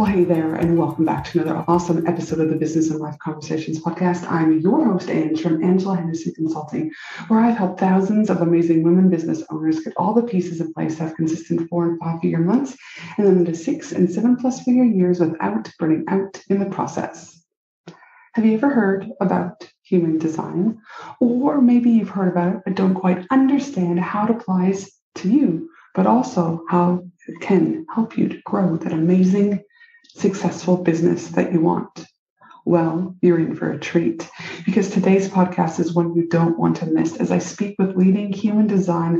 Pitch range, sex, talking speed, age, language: 170-195 Hz, female, 190 wpm, 30-49, English